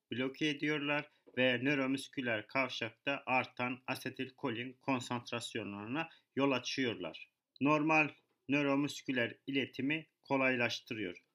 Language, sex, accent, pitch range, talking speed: Turkish, male, native, 120-145 Hz, 75 wpm